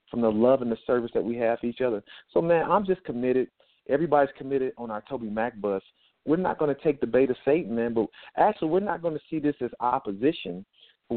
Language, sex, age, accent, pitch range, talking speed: English, male, 40-59, American, 120-150 Hz, 240 wpm